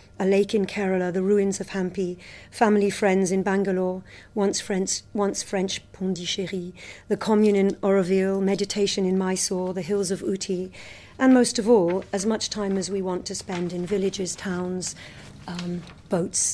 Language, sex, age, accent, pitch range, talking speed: English, female, 40-59, British, 180-210 Hz, 160 wpm